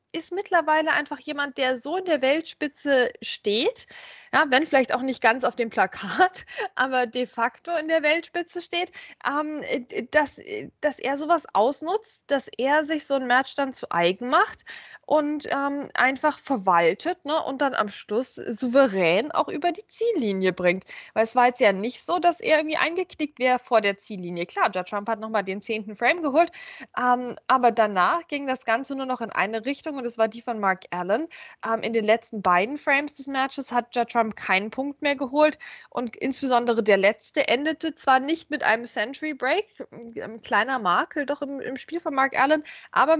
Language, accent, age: German, German, 20-39